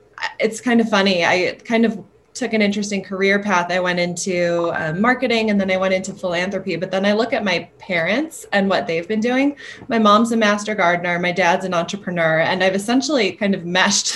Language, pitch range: English, 165-200 Hz